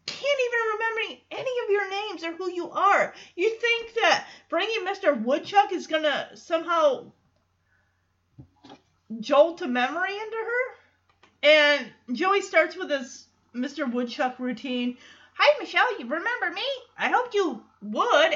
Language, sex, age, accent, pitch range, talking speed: English, female, 30-49, American, 220-345 Hz, 135 wpm